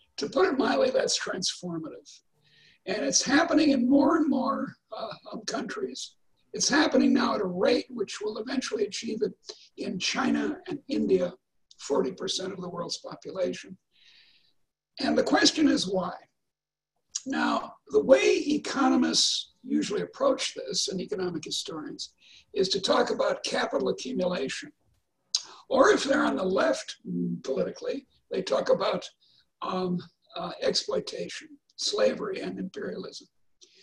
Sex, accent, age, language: male, American, 60-79, English